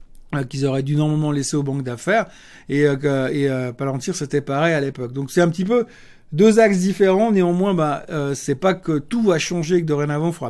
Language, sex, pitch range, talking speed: French, male, 150-195 Hz, 225 wpm